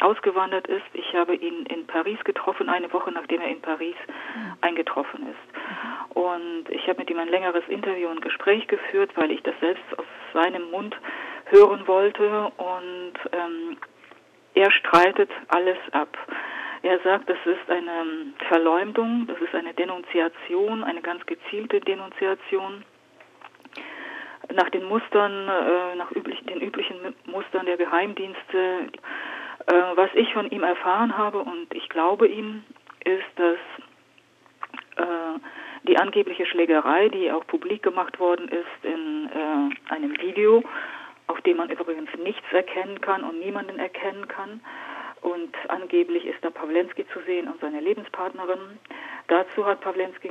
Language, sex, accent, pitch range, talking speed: German, female, German, 175-280 Hz, 140 wpm